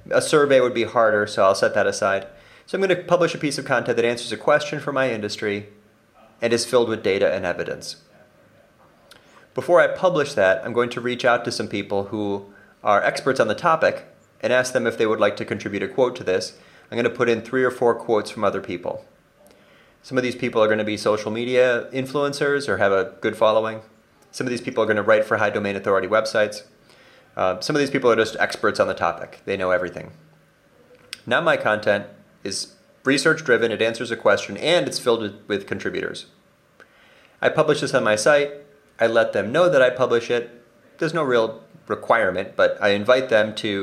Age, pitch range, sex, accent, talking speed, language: 30-49, 105-140 Hz, male, American, 215 wpm, Romanian